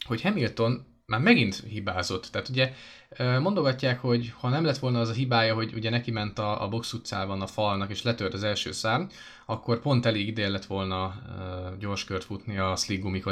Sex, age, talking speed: male, 20-39, 185 wpm